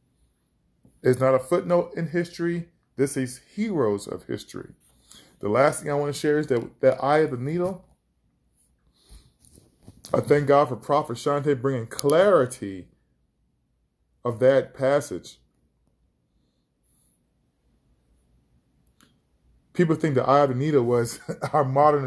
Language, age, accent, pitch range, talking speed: English, 20-39, American, 120-170 Hz, 125 wpm